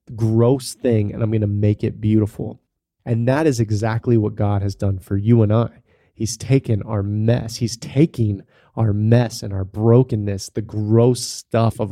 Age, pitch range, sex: 30-49, 105-125 Hz, male